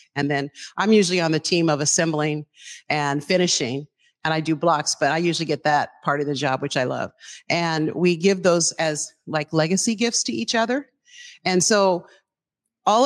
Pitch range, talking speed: 155-195 Hz, 190 wpm